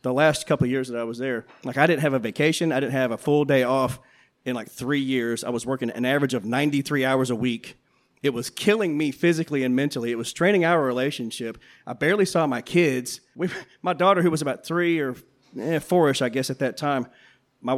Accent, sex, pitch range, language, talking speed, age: American, male, 130-205 Hz, English, 230 wpm, 30-49